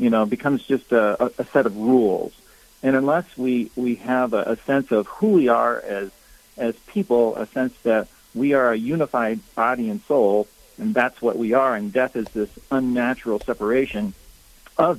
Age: 50-69